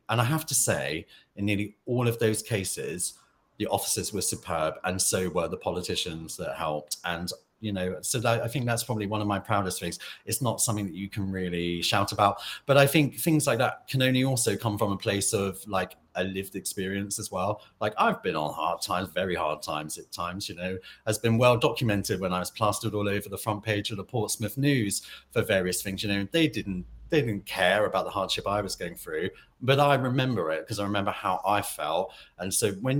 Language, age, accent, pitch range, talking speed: English, 30-49, British, 95-120 Hz, 225 wpm